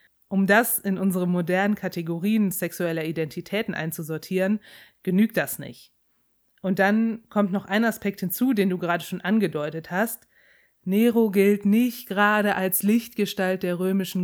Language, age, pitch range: German, 30-49, 175-205 Hz